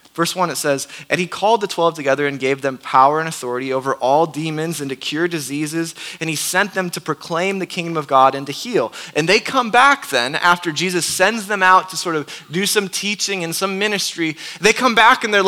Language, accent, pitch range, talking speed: English, American, 160-215 Hz, 235 wpm